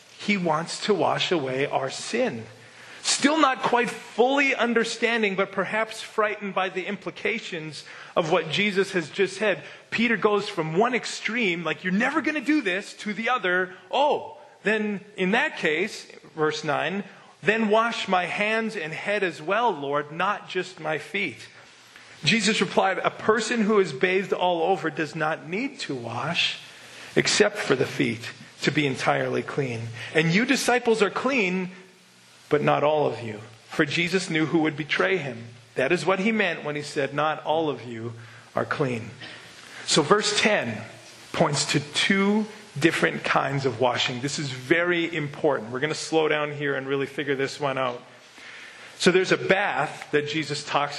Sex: male